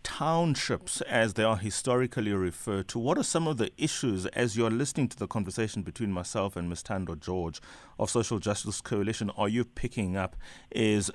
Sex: male